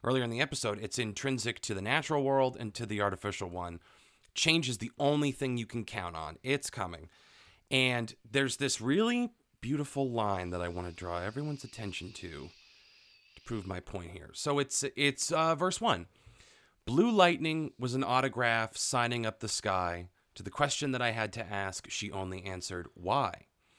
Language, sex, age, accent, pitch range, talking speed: English, male, 30-49, American, 100-135 Hz, 180 wpm